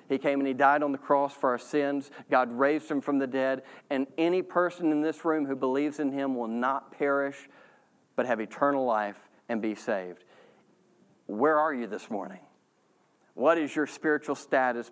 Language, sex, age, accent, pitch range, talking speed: English, male, 40-59, American, 125-150 Hz, 190 wpm